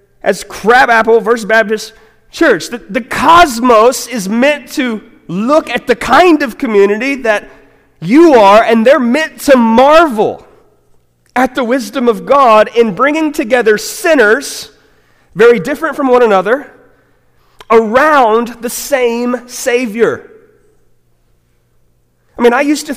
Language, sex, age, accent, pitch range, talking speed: English, male, 30-49, American, 185-255 Hz, 125 wpm